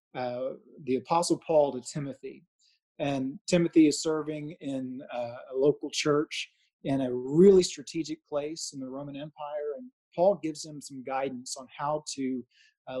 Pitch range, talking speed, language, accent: 135-175 Hz, 155 wpm, English, American